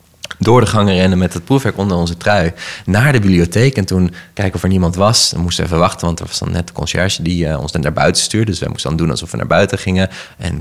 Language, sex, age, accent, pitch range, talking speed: Dutch, male, 20-39, Dutch, 85-100 Hz, 285 wpm